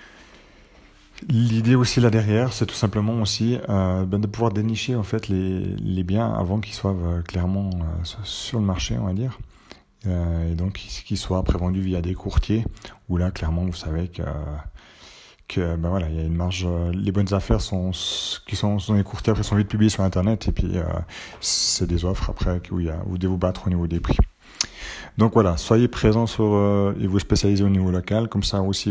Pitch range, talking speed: 90-105 Hz, 205 wpm